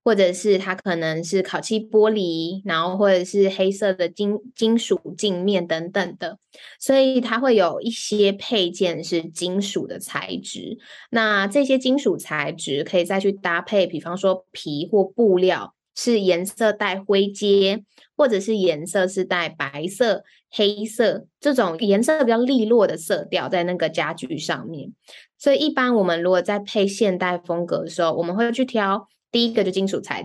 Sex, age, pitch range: female, 10-29, 180-225 Hz